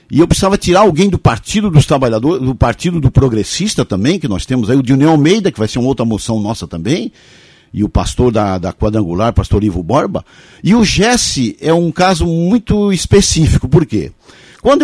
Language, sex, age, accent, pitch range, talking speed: Portuguese, male, 50-69, Brazilian, 125-195 Hz, 200 wpm